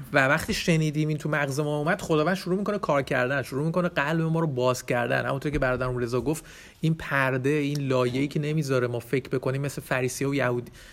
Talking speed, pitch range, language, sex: 210 wpm, 130-160 Hz, Persian, male